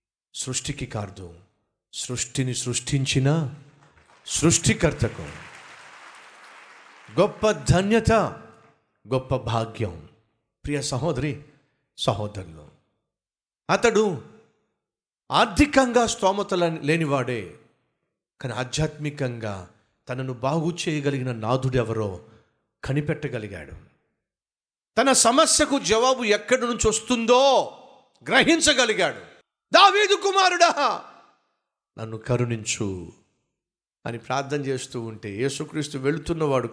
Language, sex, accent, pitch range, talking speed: Telugu, male, native, 110-160 Hz, 60 wpm